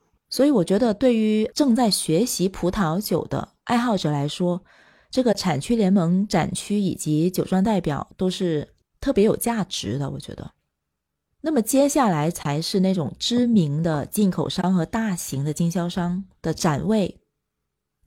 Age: 30-49